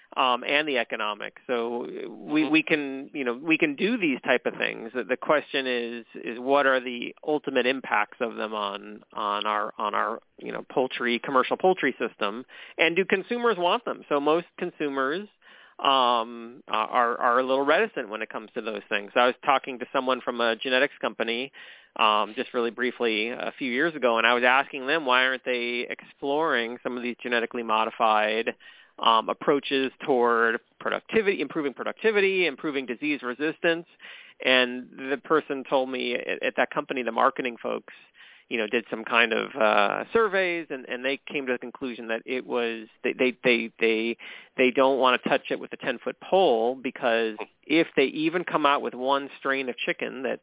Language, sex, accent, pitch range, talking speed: English, male, American, 115-145 Hz, 190 wpm